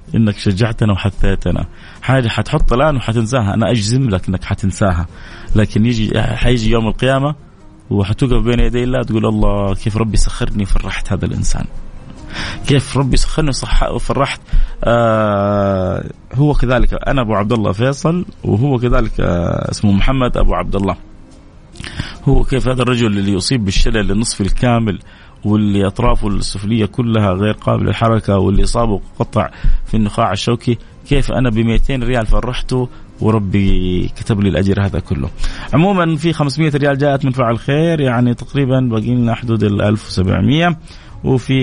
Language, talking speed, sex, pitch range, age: Arabic, 140 wpm, male, 100-125 Hz, 30-49